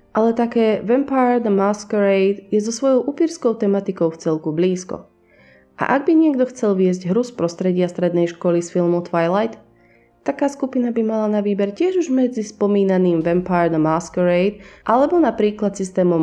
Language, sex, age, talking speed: Slovak, female, 20-39, 160 wpm